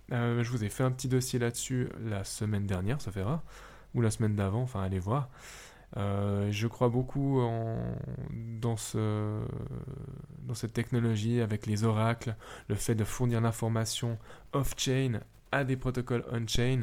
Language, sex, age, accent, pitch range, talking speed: French, male, 10-29, French, 105-125 Hz, 155 wpm